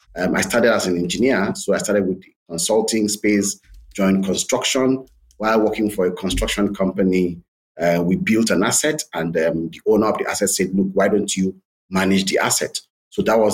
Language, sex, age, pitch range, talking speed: English, male, 30-49, 95-110 Hz, 195 wpm